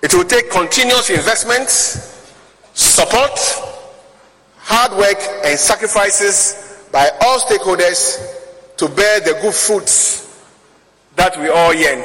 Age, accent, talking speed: 50-69, Nigerian, 110 wpm